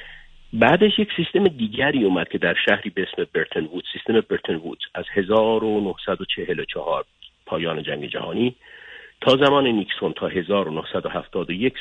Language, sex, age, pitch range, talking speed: Persian, male, 50-69, 90-125 Hz, 115 wpm